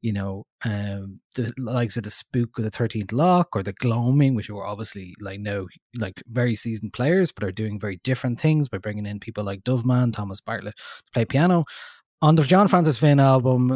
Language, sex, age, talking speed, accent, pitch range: English, male, 20-39, 205 wpm, Irish, 105-135 Hz